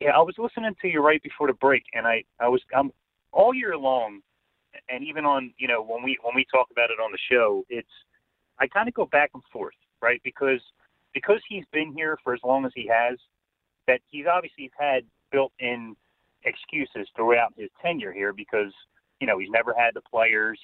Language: English